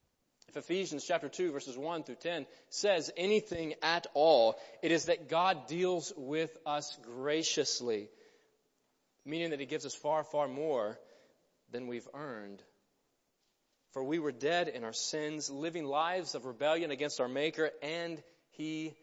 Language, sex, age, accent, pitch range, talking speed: English, male, 30-49, American, 150-205 Hz, 145 wpm